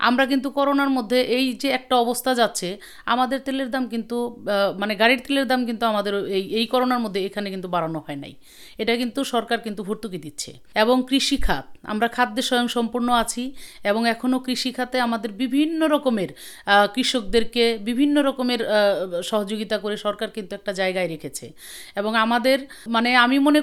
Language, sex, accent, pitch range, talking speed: Bengali, female, native, 210-260 Hz, 160 wpm